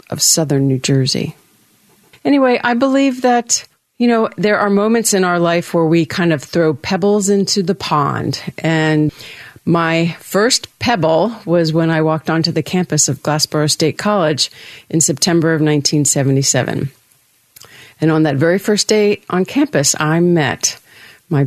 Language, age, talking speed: English, 50-69, 155 wpm